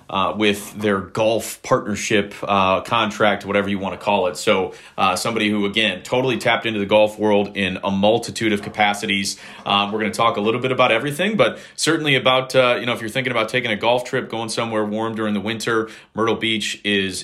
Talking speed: 215 wpm